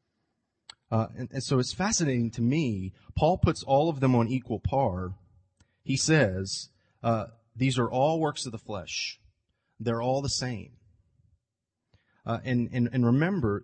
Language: English